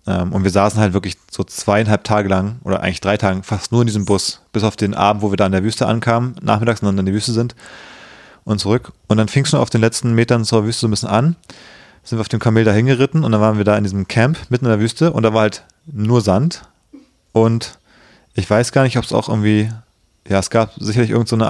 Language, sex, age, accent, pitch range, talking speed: German, male, 30-49, German, 105-130 Hz, 250 wpm